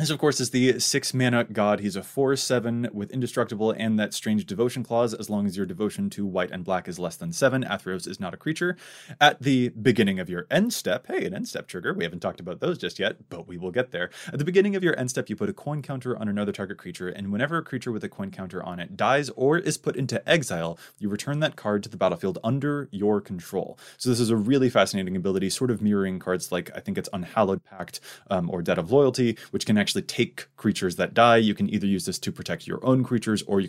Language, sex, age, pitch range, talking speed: English, male, 20-39, 100-140 Hz, 255 wpm